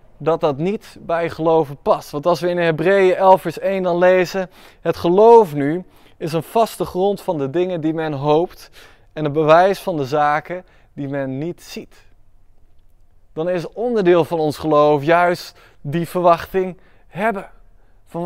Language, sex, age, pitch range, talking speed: Dutch, male, 20-39, 140-190 Hz, 165 wpm